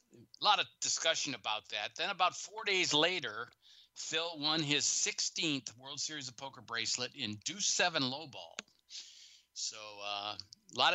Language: English